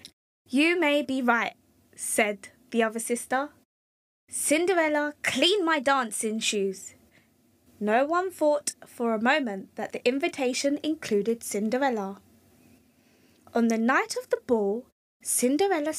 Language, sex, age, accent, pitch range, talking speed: English, female, 20-39, British, 220-310 Hz, 115 wpm